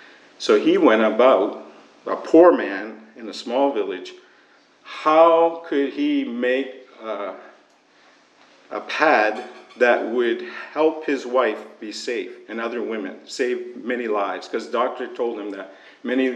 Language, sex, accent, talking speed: English, male, American, 140 wpm